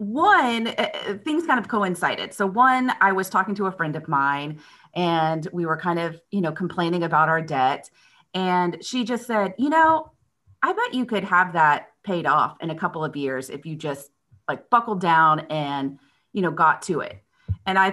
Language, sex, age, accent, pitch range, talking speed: English, female, 30-49, American, 160-220 Hz, 195 wpm